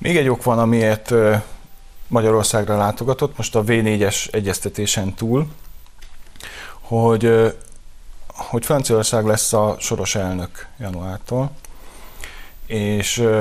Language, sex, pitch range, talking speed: Hungarian, male, 100-120 Hz, 95 wpm